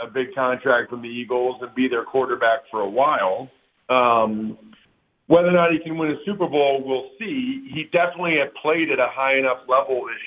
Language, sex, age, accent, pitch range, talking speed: English, male, 50-69, American, 130-195 Hz, 205 wpm